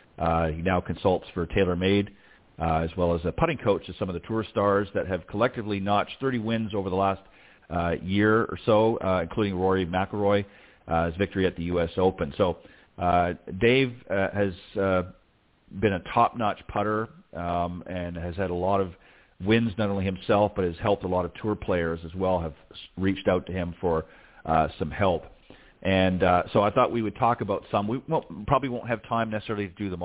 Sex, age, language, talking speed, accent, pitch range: male, 40-59, English, 205 wpm, American, 90-105 Hz